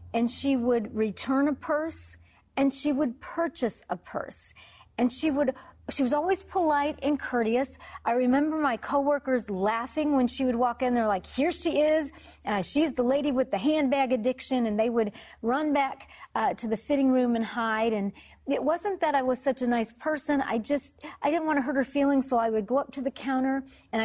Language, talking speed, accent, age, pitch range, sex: English, 210 wpm, American, 40-59, 225-285 Hz, female